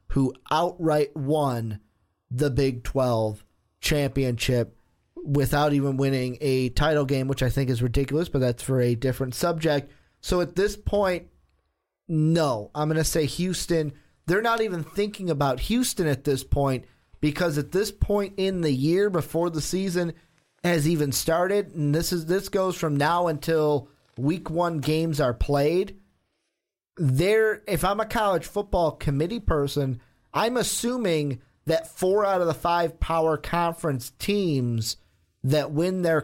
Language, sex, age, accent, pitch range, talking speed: English, male, 30-49, American, 135-175 Hz, 150 wpm